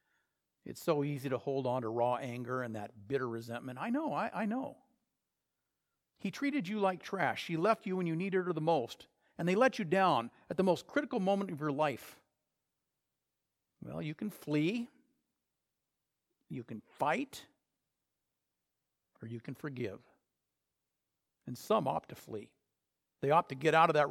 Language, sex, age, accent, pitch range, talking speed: English, male, 50-69, American, 135-185 Hz, 170 wpm